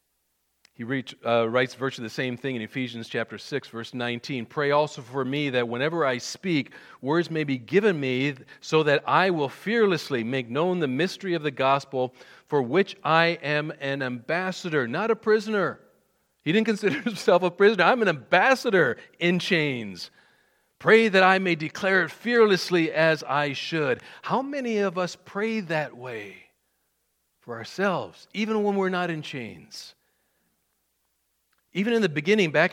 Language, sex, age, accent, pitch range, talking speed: English, male, 40-59, American, 140-195 Hz, 165 wpm